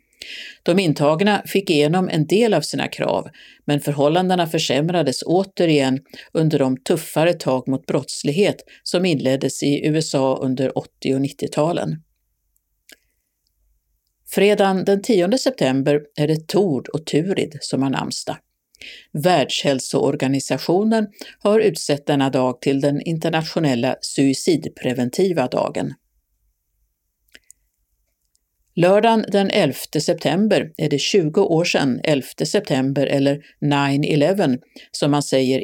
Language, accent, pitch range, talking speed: Swedish, native, 135-180 Hz, 110 wpm